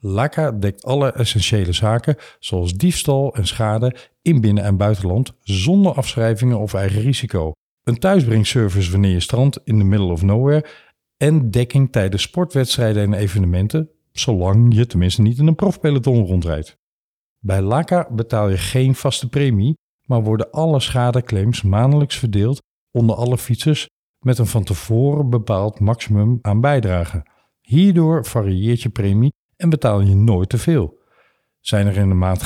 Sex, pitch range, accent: male, 100-135 Hz, Dutch